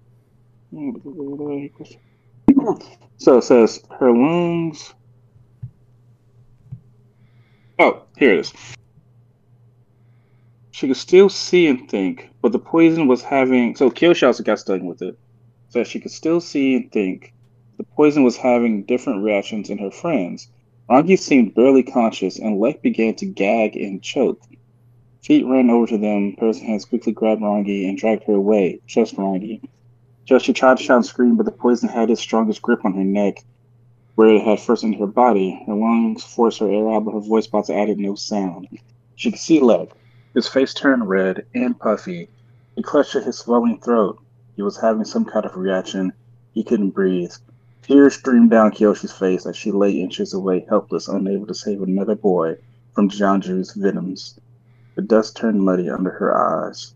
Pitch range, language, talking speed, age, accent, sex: 105-125 Hz, English, 170 wpm, 30-49, American, male